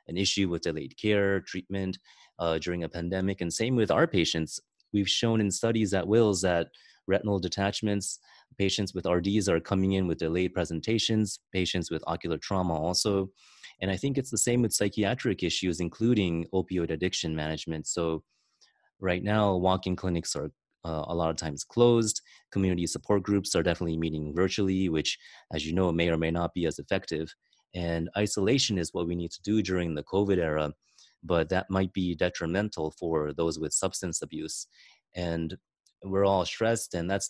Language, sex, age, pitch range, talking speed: English, male, 30-49, 85-100 Hz, 175 wpm